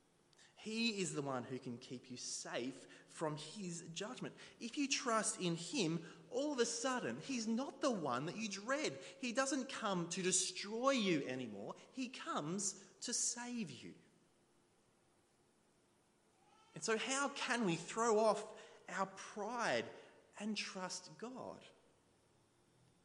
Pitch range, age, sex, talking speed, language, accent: 170-230 Hz, 20-39, male, 135 wpm, English, Australian